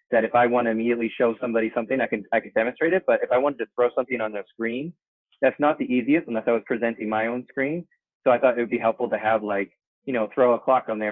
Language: English